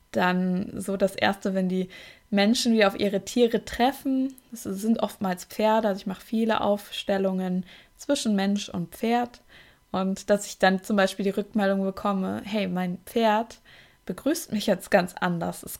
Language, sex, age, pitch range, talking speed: German, female, 20-39, 190-225 Hz, 165 wpm